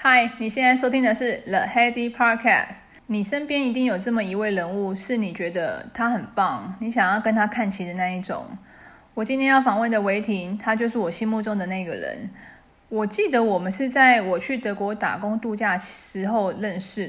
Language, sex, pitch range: Chinese, female, 200-245 Hz